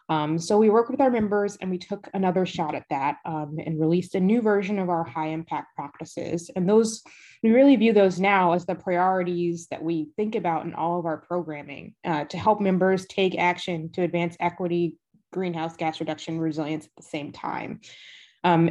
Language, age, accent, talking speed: English, 20-39, American, 200 wpm